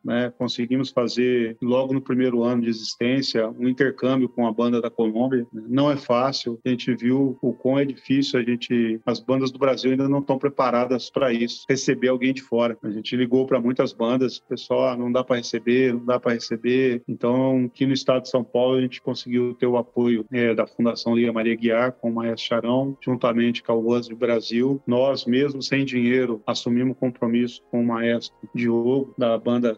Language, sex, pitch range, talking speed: Portuguese, male, 120-130 Hz, 200 wpm